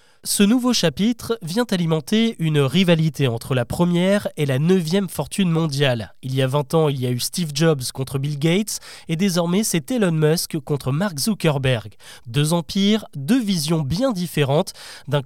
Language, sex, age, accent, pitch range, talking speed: French, male, 20-39, French, 145-195 Hz, 175 wpm